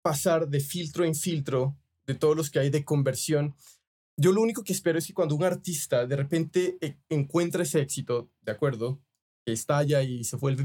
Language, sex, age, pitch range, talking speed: Spanish, male, 20-39, 145-175 Hz, 190 wpm